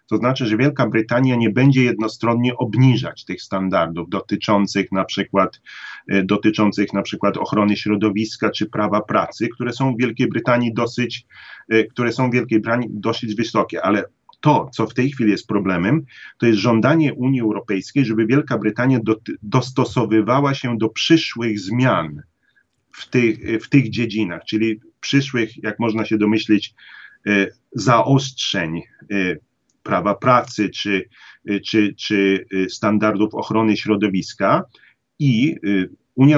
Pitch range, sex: 105-130 Hz, male